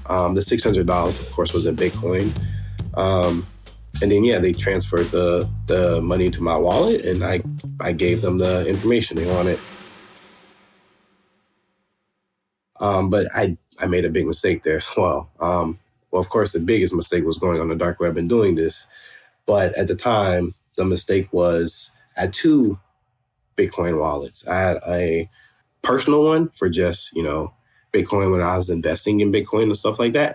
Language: English